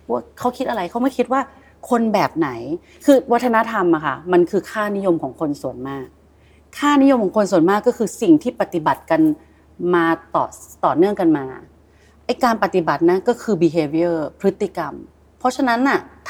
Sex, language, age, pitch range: female, Thai, 30-49, 175-245 Hz